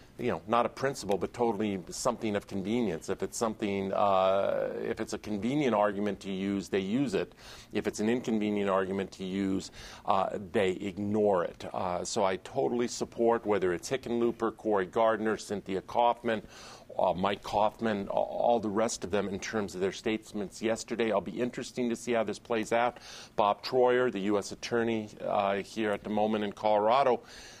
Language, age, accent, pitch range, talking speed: English, 50-69, American, 100-115 Hz, 180 wpm